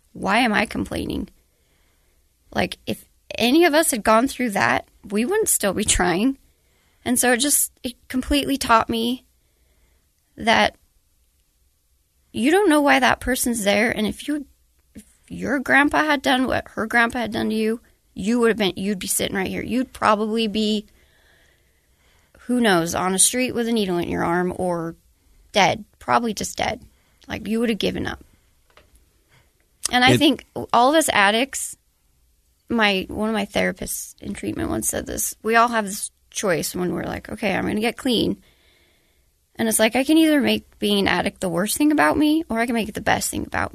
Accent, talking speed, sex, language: American, 185 wpm, female, English